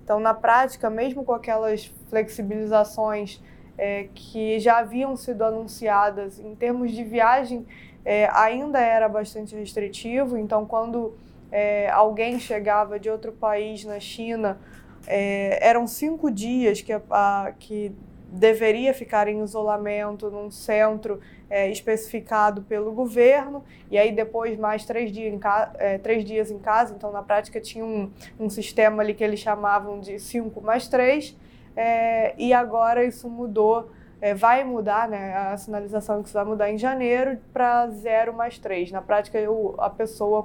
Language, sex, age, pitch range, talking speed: Portuguese, female, 20-39, 205-230 Hz, 140 wpm